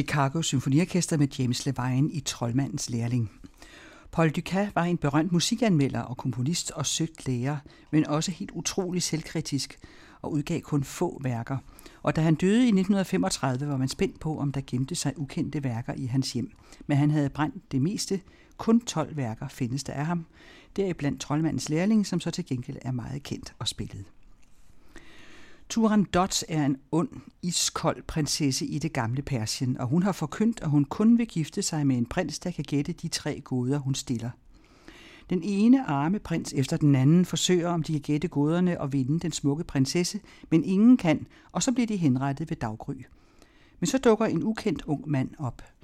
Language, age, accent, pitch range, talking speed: Danish, 60-79, native, 135-170 Hz, 185 wpm